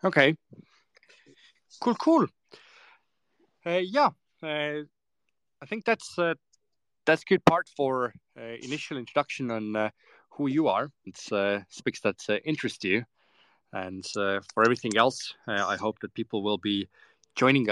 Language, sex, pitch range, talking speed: English, male, 105-140 Hz, 145 wpm